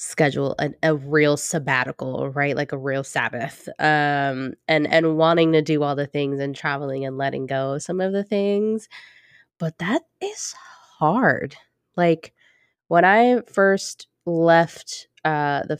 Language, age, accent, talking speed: English, 20-39, American, 150 wpm